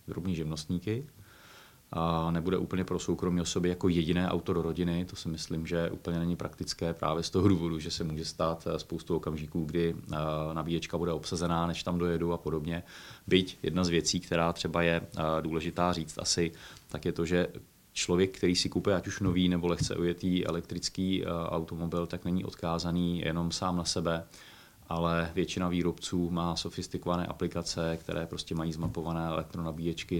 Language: Czech